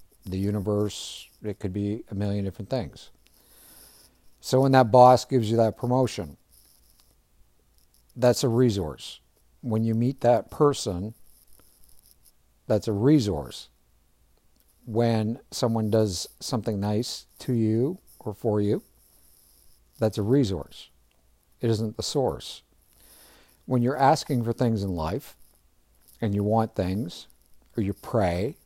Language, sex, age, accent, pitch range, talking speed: English, male, 50-69, American, 90-120 Hz, 125 wpm